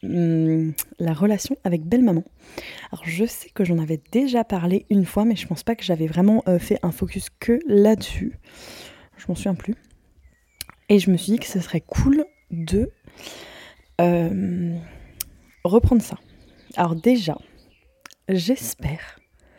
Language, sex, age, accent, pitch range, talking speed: French, female, 20-39, French, 170-215 Hz, 140 wpm